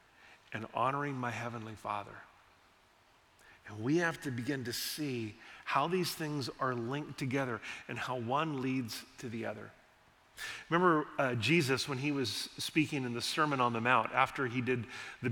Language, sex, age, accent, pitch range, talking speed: English, male, 40-59, American, 130-180 Hz, 165 wpm